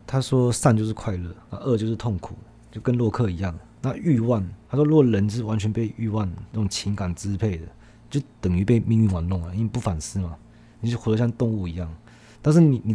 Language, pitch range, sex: Chinese, 95-120 Hz, male